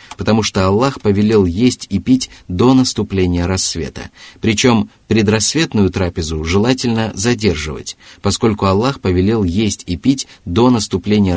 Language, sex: Russian, male